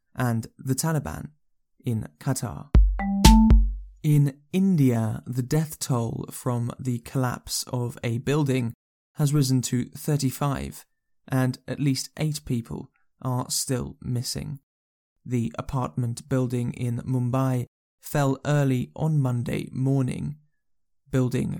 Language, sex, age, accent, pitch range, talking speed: English, male, 20-39, British, 125-150 Hz, 110 wpm